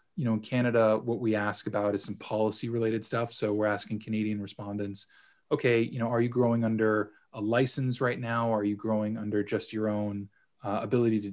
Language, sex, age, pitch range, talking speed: English, male, 20-39, 105-120 Hz, 205 wpm